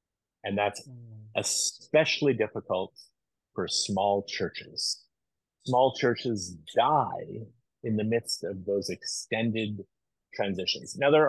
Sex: male